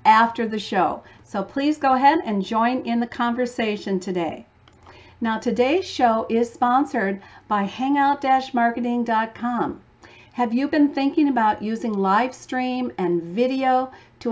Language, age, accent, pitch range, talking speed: English, 50-69, American, 205-265 Hz, 130 wpm